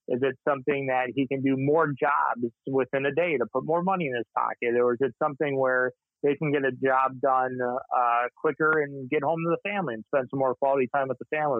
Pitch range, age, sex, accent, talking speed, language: 120-145 Hz, 30-49, male, American, 245 wpm, English